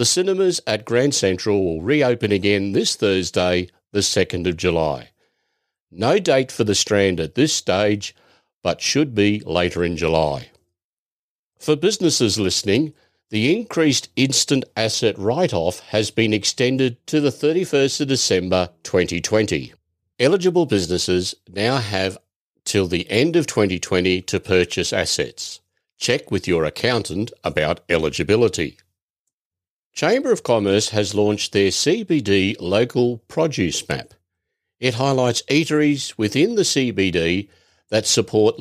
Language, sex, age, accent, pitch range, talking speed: English, male, 50-69, Australian, 90-120 Hz, 125 wpm